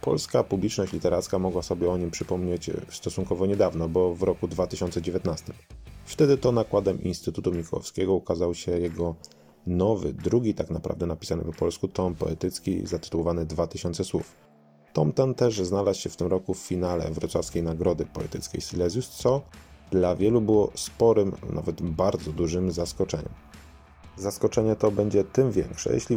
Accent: native